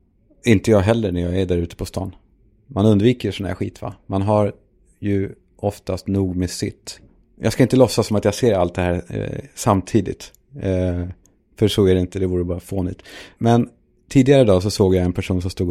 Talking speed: 205 wpm